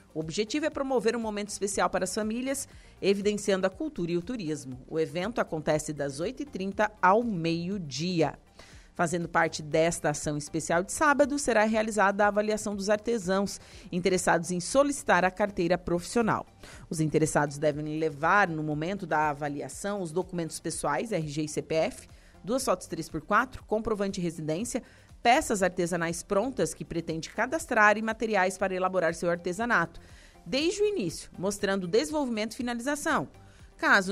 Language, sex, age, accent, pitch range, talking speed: Portuguese, female, 40-59, Brazilian, 165-215 Hz, 145 wpm